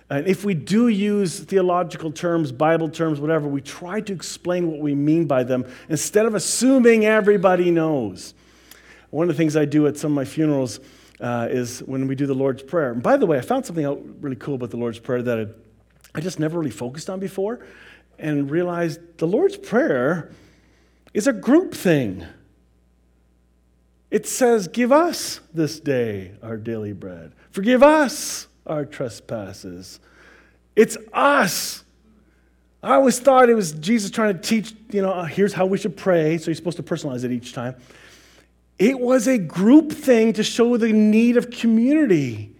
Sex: male